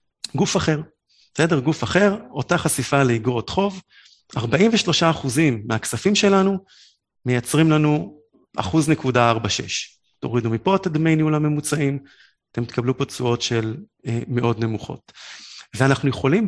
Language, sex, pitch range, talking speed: Hebrew, male, 125-185 Hz, 115 wpm